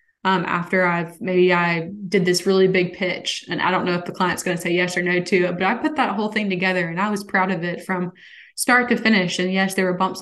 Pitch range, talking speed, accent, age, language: 180-210 Hz, 275 wpm, American, 20-39, English